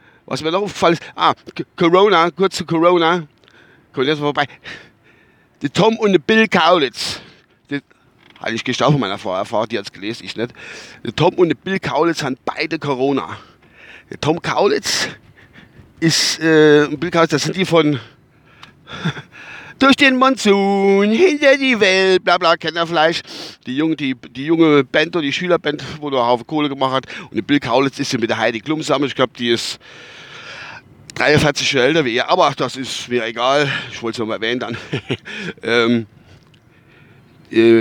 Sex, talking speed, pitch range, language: male, 170 wpm, 125-165 Hz, German